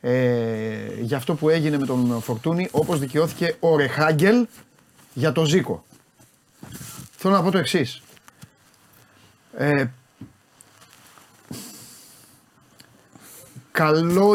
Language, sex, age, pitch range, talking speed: Greek, male, 30-49, 125-170 Hz, 90 wpm